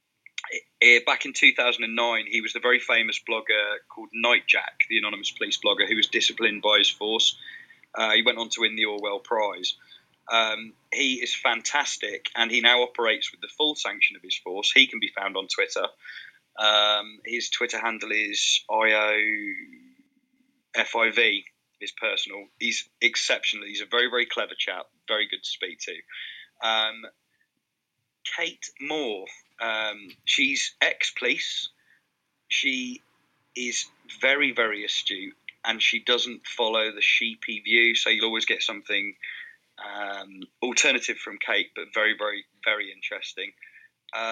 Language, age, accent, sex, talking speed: English, 20-39, British, male, 145 wpm